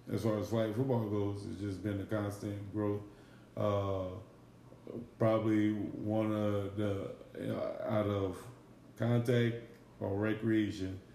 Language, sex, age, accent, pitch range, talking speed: English, male, 30-49, American, 95-110 Hz, 130 wpm